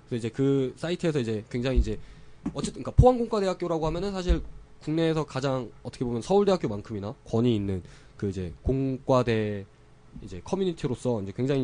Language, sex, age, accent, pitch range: Korean, male, 20-39, native, 115-170 Hz